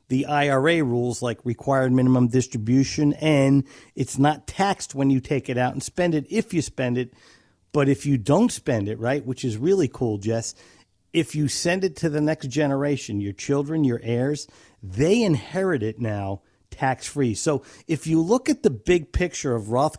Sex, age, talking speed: male, 50-69, 185 wpm